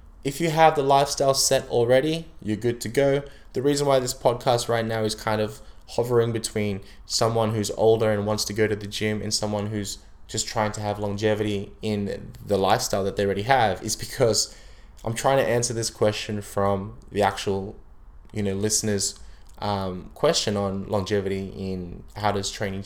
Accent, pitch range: Australian, 100-115 Hz